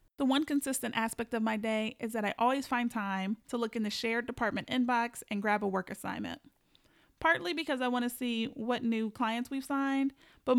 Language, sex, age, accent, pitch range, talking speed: English, female, 30-49, American, 215-255 Hz, 210 wpm